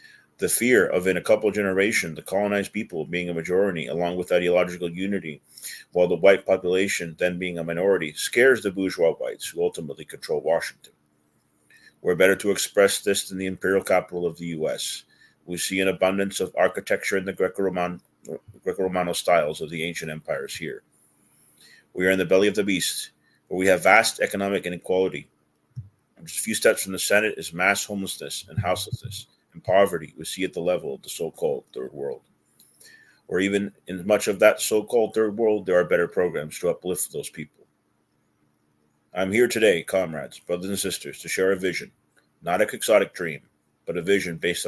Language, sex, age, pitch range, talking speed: English, male, 40-59, 85-110 Hz, 180 wpm